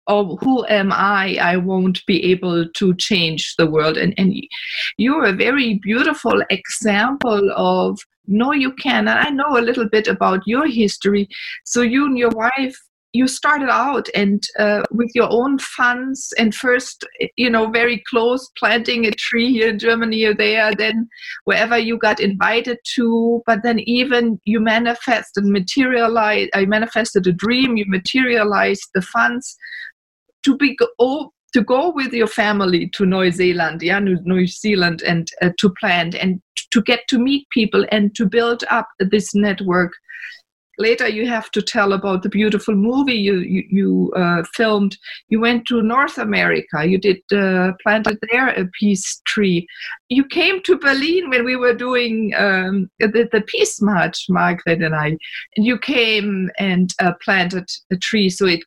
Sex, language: female, English